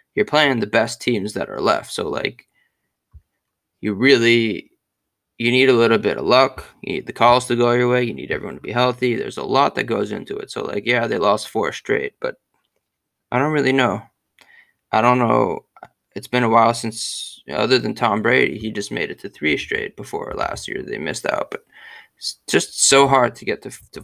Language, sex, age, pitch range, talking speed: English, male, 20-39, 110-135 Hz, 220 wpm